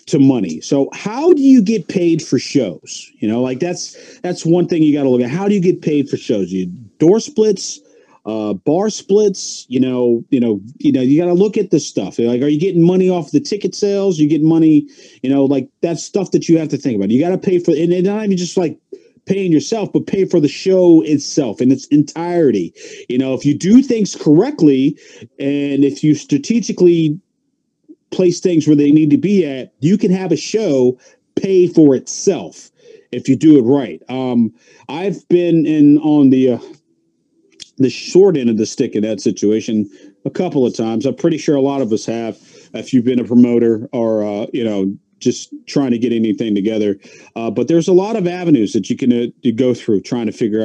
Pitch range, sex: 120-185 Hz, male